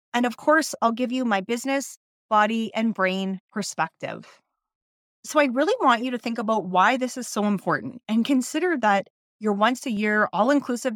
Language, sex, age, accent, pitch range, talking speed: English, female, 30-49, American, 205-260 Hz, 180 wpm